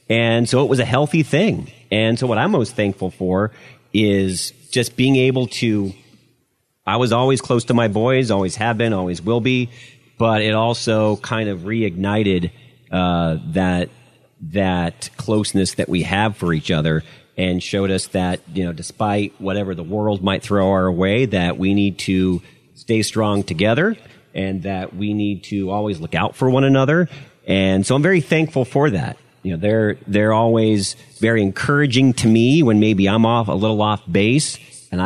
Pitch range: 95-125 Hz